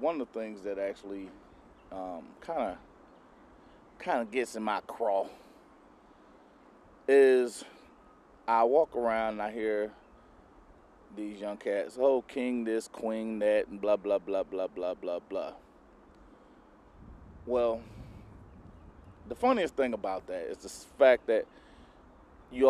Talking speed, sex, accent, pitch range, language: 125 wpm, male, American, 105-140 Hz, English